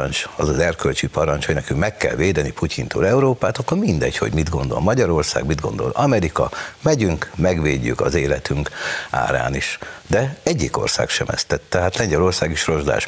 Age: 60-79